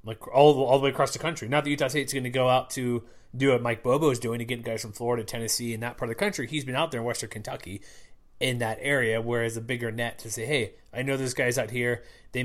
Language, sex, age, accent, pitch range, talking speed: English, male, 30-49, American, 120-140 Hz, 285 wpm